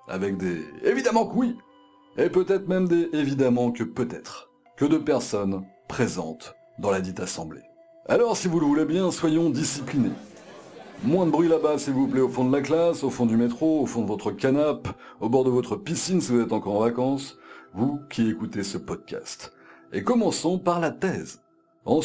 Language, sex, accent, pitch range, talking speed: French, male, French, 120-180 Hz, 195 wpm